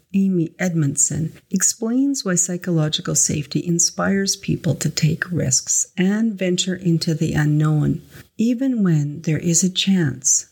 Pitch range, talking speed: 150-190 Hz, 125 wpm